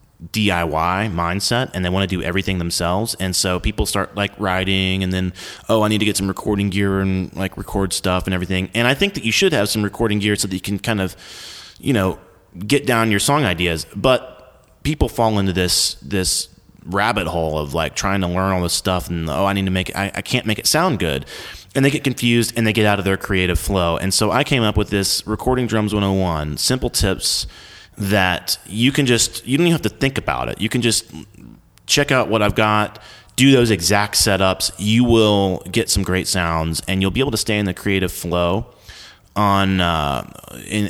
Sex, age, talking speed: male, 30-49, 225 wpm